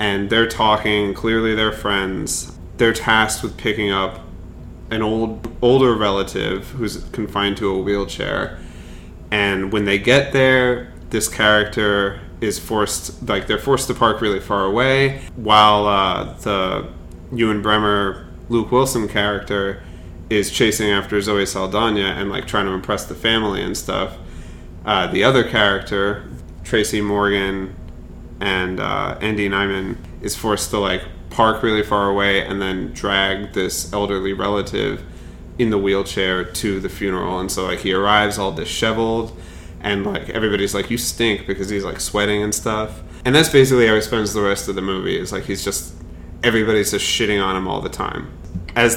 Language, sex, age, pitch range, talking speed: English, male, 30-49, 95-110 Hz, 160 wpm